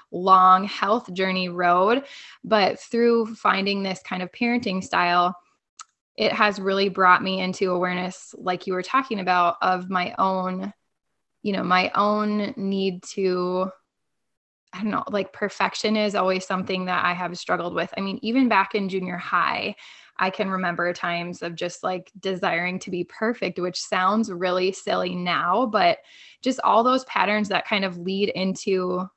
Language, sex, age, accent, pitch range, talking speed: English, female, 20-39, American, 180-215 Hz, 165 wpm